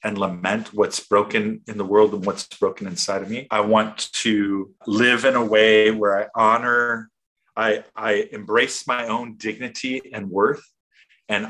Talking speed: 165 wpm